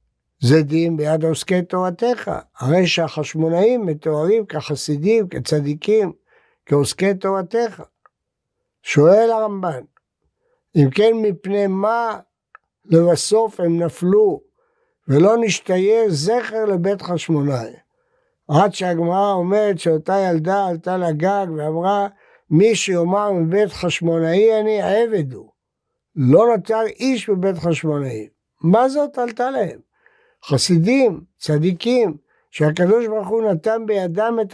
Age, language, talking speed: 60-79, Hebrew, 100 wpm